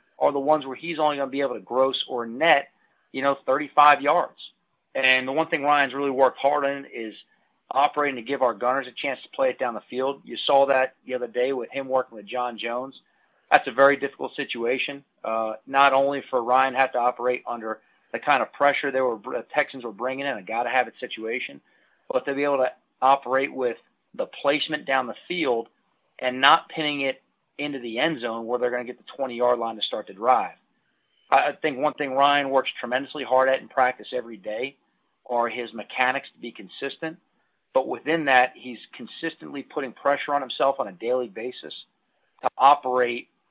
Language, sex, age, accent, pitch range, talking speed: English, male, 30-49, American, 125-140 Hz, 200 wpm